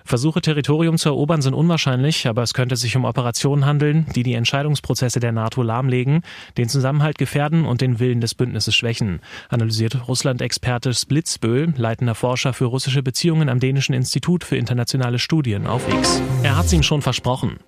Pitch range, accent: 120-145 Hz, German